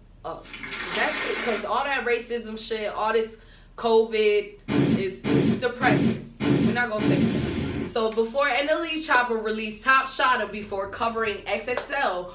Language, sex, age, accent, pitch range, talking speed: English, female, 20-39, American, 195-235 Hz, 135 wpm